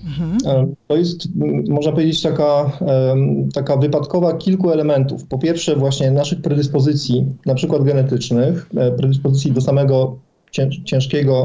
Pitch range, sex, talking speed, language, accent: 140-160 Hz, male, 110 wpm, Polish, native